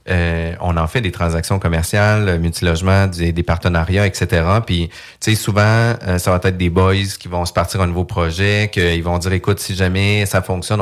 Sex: male